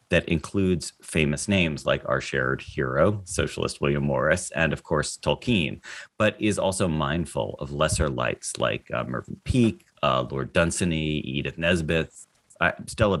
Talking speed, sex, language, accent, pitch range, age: 140 wpm, male, English, American, 70-90 Hz, 30-49